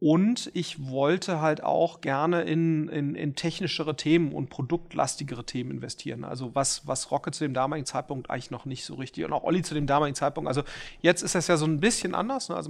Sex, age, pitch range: male, 40-59, 145-170 Hz